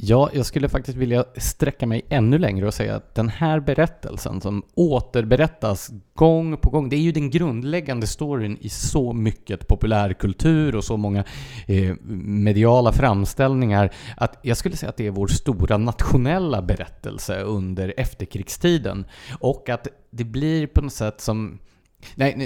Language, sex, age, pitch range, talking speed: English, male, 30-49, 100-135 Hz, 150 wpm